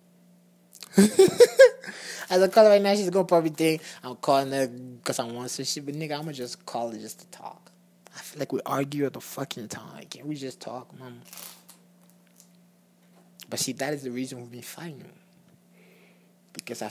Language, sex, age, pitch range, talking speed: English, male, 20-39, 135-180 Hz, 190 wpm